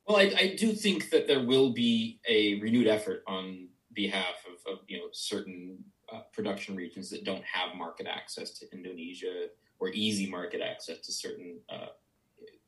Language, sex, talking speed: English, male, 170 wpm